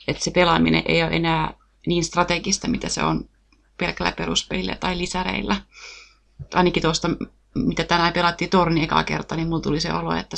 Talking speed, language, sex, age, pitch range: 170 wpm, Finnish, female, 30-49, 155-180 Hz